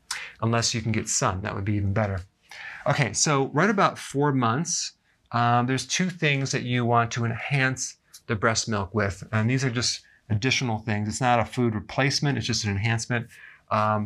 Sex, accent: male, American